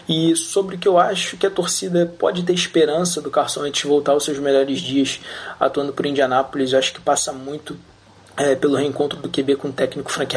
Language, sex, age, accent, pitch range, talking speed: Portuguese, male, 20-39, Brazilian, 130-140 Hz, 215 wpm